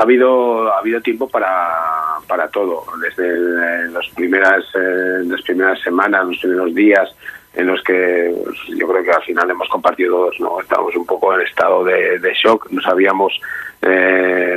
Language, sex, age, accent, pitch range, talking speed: Spanish, male, 40-59, Spanish, 100-120 Hz, 175 wpm